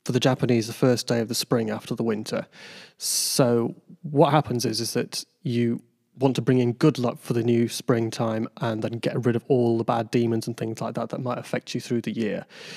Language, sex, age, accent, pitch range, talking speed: English, male, 30-49, British, 120-130 Hz, 230 wpm